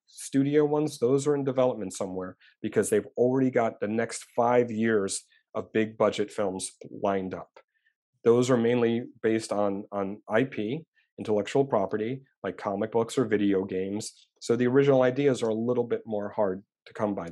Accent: American